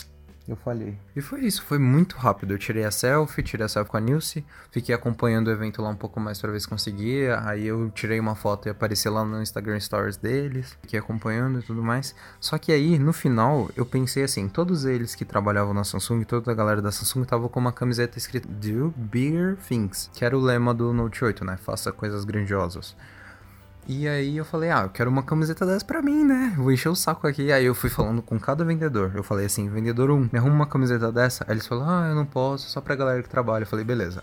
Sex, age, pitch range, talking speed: male, 20-39, 110-140 Hz, 240 wpm